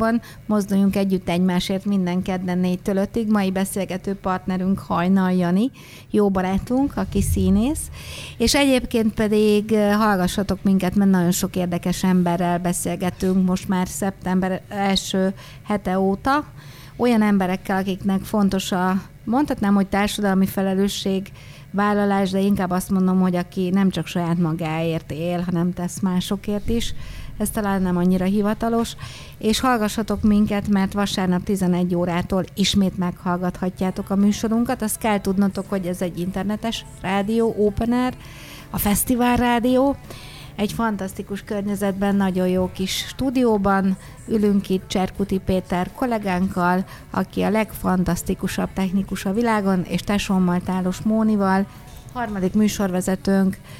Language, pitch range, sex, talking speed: Hungarian, 185-205 Hz, female, 125 wpm